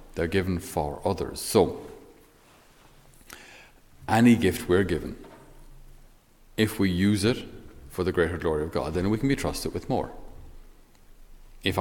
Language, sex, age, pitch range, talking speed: English, male, 40-59, 85-105 Hz, 135 wpm